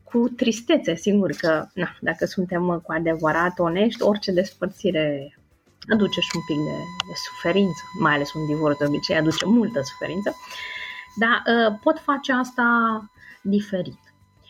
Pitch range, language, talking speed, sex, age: 170-230 Hz, Romanian, 135 wpm, female, 30-49